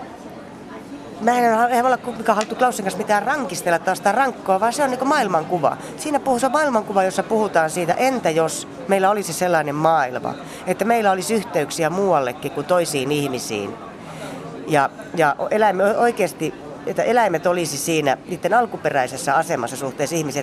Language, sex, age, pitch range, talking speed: Finnish, female, 30-49, 145-205 Hz, 145 wpm